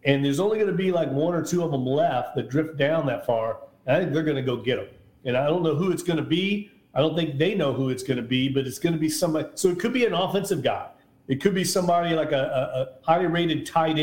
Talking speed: 300 wpm